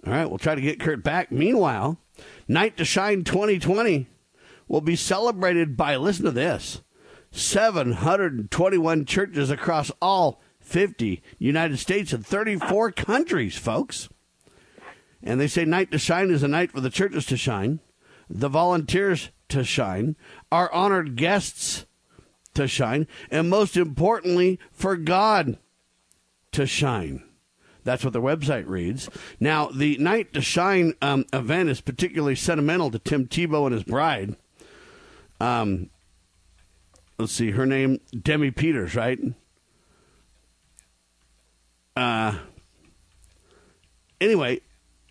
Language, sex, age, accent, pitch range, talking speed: English, male, 50-69, American, 115-175 Hz, 120 wpm